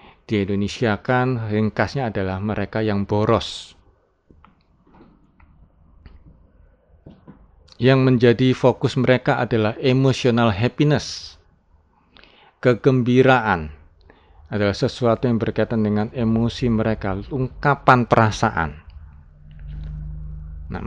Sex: male